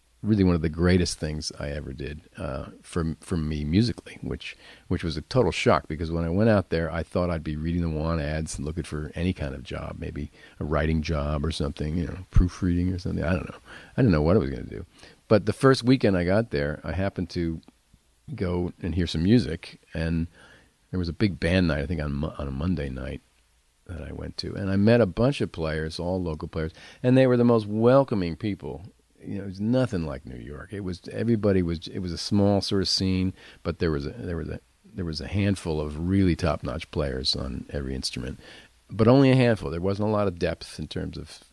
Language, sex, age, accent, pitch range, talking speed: English, male, 50-69, American, 75-95 Hz, 240 wpm